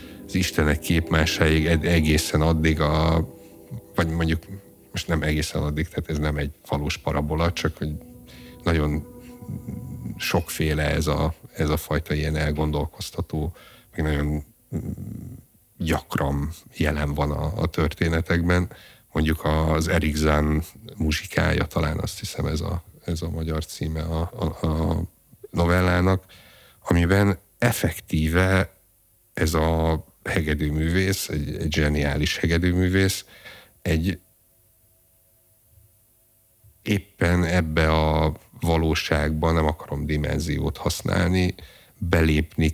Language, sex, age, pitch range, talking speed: Hungarian, male, 60-79, 75-95 Hz, 95 wpm